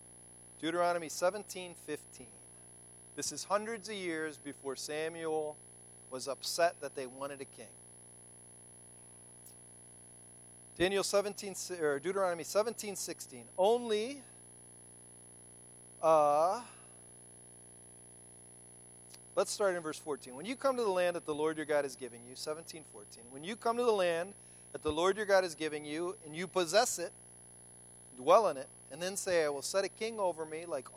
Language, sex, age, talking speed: English, male, 40-59, 145 wpm